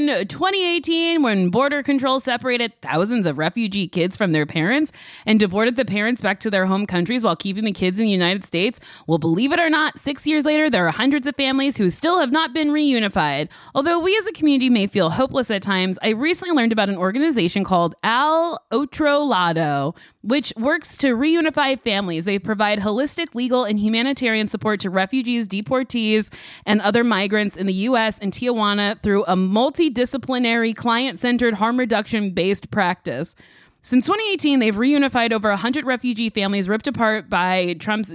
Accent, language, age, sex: American, English, 20-39, female